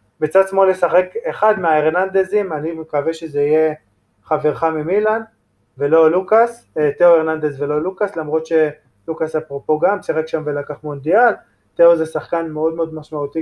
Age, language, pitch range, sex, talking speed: 20-39, Hebrew, 150-180 Hz, male, 140 wpm